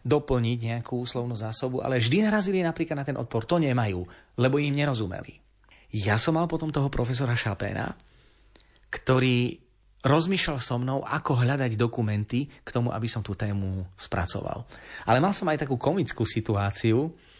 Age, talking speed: 30-49, 150 wpm